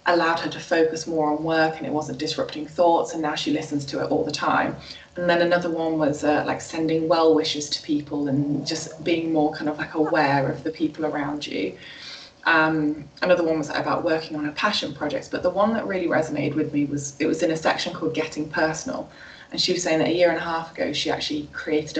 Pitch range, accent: 145-160 Hz, British